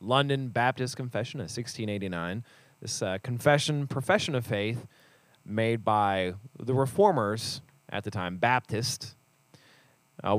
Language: English